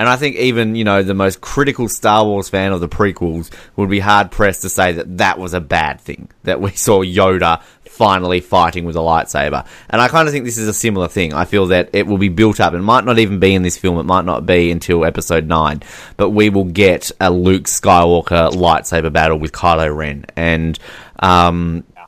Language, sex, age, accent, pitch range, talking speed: English, male, 20-39, Australian, 90-120 Hz, 225 wpm